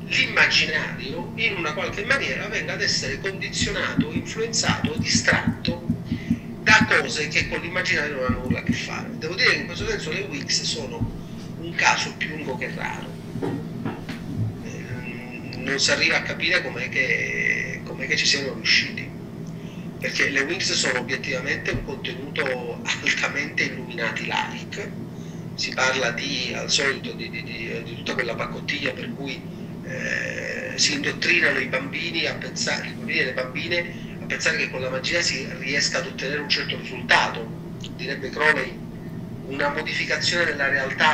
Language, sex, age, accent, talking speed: Italian, male, 40-59, native, 150 wpm